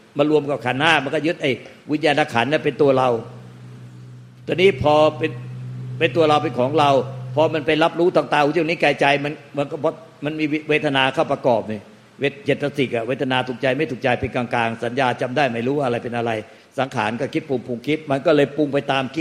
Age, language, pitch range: 60-79, Thai, 135-165 Hz